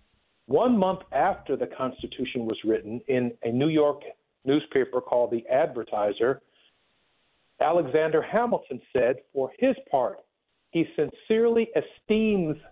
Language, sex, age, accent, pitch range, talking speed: English, male, 50-69, American, 125-190 Hz, 115 wpm